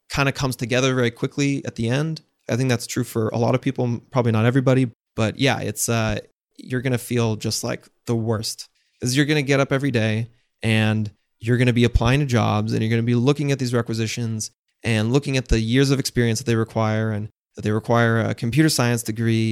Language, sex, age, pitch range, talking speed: English, male, 30-49, 115-140 Hz, 235 wpm